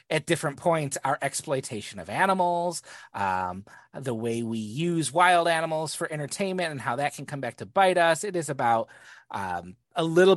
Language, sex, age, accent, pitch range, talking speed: English, male, 30-49, American, 135-200 Hz, 180 wpm